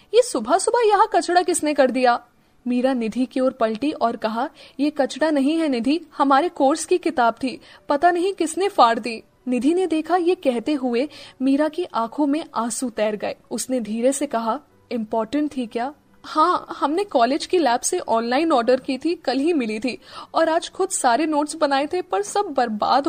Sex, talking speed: female, 190 wpm